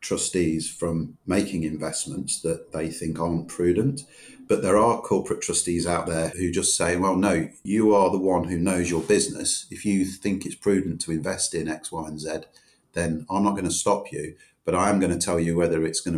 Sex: male